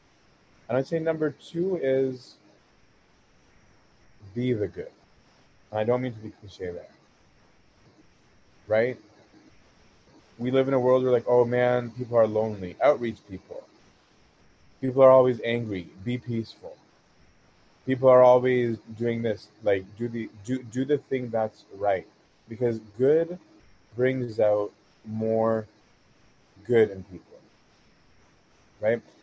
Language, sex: English, male